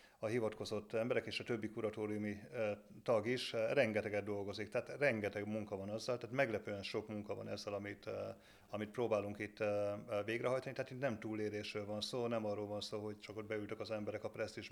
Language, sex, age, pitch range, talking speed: Hungarian, male, 30-49, 105-115 Hz, 200 wpm